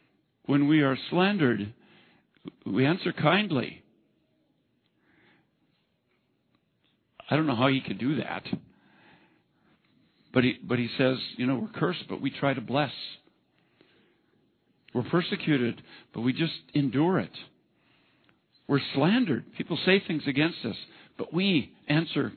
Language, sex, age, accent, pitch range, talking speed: English, male, 60-79, American, 125-160 Hz, 125 wpm